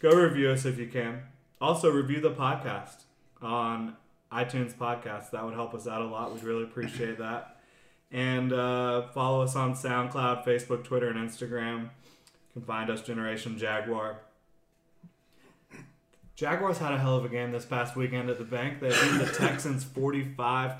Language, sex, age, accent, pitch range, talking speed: English, male, 20-39, American, 120-135 Hz, 165 wpm